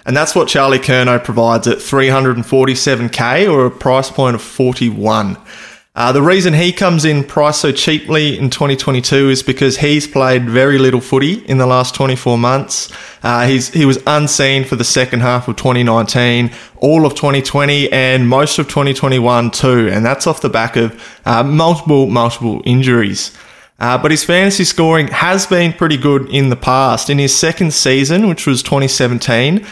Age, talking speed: 20-39, 170 wpm